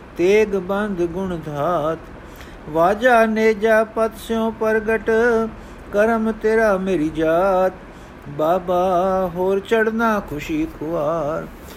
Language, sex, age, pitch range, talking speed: Punjabi, male, 50-69, 155-220 Hz, 95 wpm